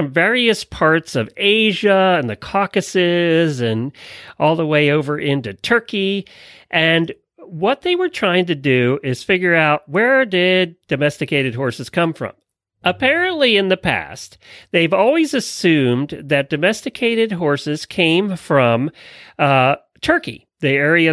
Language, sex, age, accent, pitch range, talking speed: English, male, 40-59, American, 145-210 Hz, 130 wpm